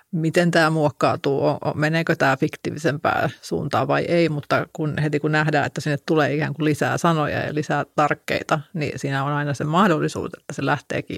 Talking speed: 175 wpm